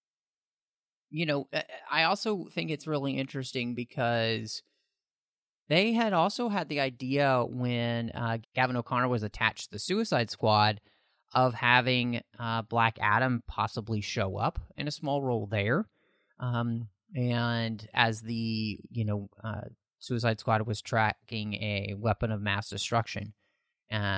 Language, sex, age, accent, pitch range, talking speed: English, male, 30-49, American, 105-130 Hz, 135 wpm